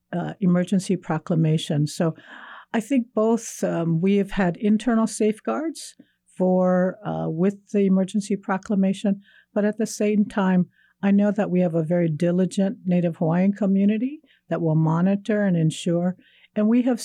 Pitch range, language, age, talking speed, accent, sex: 165-205 Hz, English, 60-79, 150 wpm, American, female